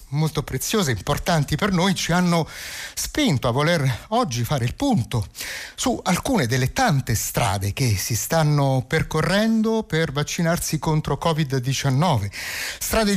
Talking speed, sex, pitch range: 130 wpm, male, 125-165 Hz